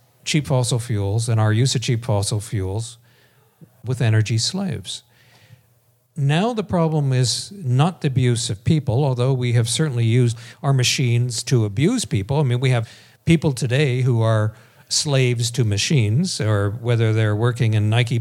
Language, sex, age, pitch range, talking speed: English, male, 50-69, 120-145 Hz, 160 wpm